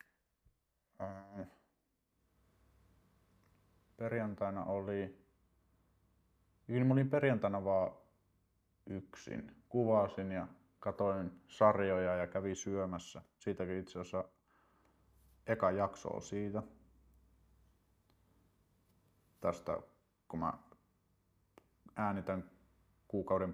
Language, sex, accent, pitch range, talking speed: Finnish, male, native, 90-105 Hz, 65 wpm